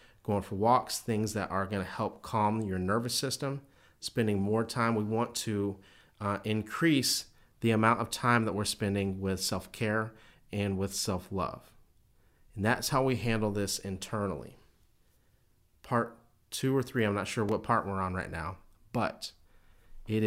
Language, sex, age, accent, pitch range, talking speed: English, male, 40-59, American, 100-120 Hz, 160 wpm